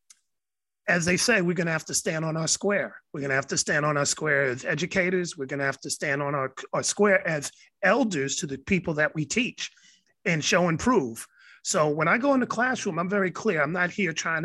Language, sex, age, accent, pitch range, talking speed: English, male, 30-49, American, 150-200 Hz, 235 wpm